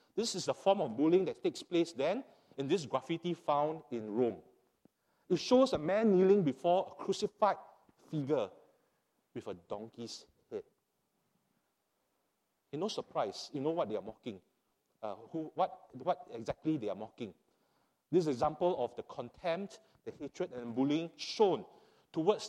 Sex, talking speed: male, 160 wpm